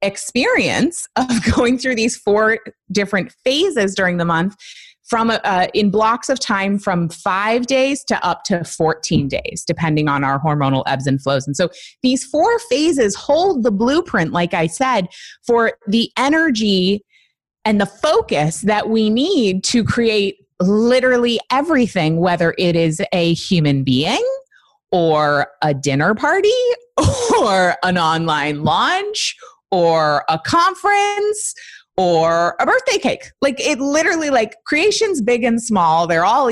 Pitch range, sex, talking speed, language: 175-255 Hz, female, 145 wpm, English